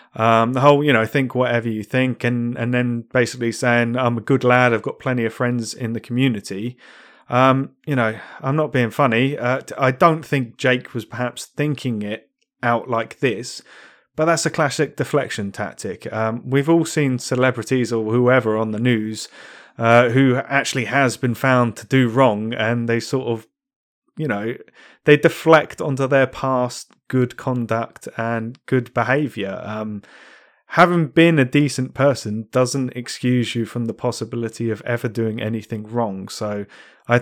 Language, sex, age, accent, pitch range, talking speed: English, male, 30-49, British, 110-135 Hz, 170 wpm